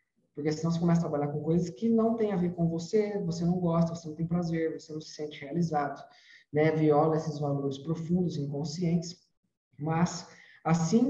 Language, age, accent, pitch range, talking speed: Portuguese, 20-39, Brazilian, 150-185 Hz, 190 wpm